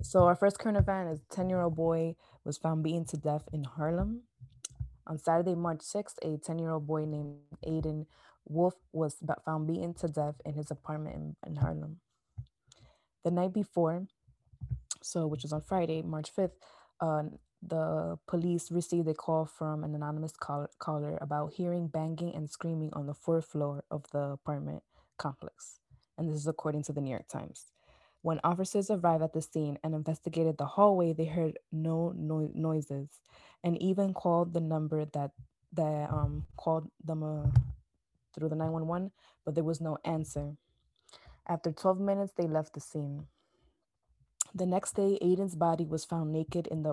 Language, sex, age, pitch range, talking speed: English, female, 20-39, 150-170 Hz, 165 wpm